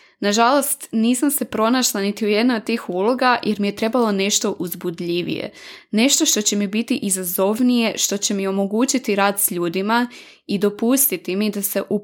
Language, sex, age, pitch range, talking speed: Croatian, female, 20-39, 195-235 Hz, 175 wpm